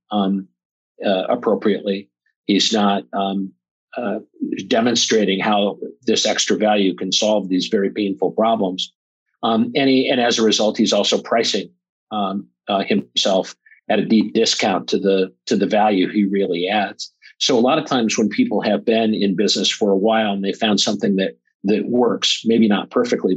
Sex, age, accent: male, 50-69, American